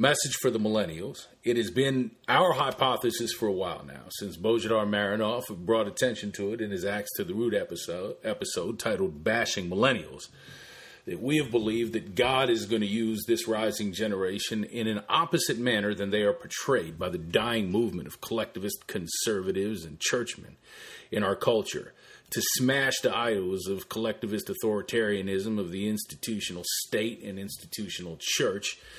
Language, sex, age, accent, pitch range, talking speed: English, male, 40-59, American, 100-115 Hz, 160 wpm